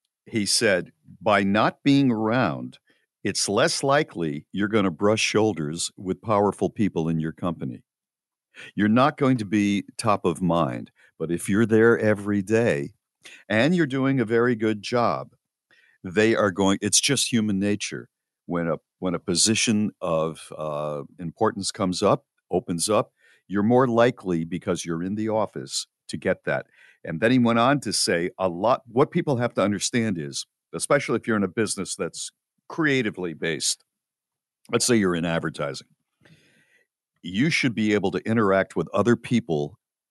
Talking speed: 165 wpm